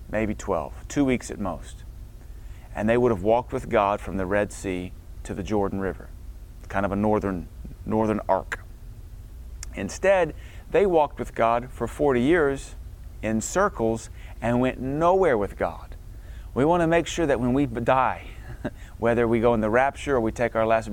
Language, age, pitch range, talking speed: English, 30-49, 100-130 Hz, 180 wpm